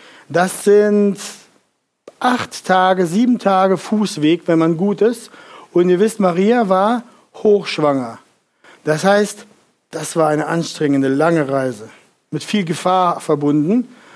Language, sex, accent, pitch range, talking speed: German, male, German, 165-215 Hz, 125 wpm